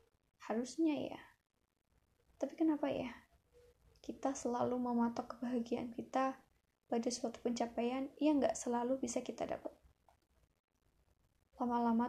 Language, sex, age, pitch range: Indonesian, female, 10-29, 235-285 Hz